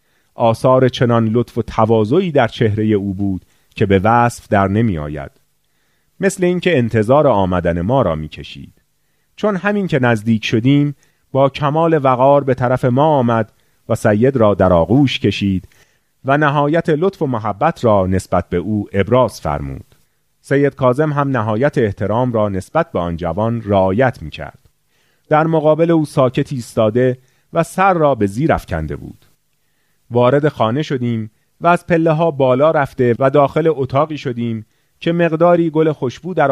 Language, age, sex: Persian, 30-49, male